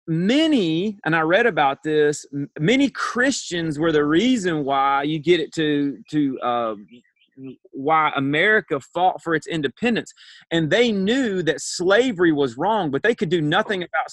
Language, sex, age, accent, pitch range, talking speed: English, male, 30-49, American, 150-210 Hz, 155 wpm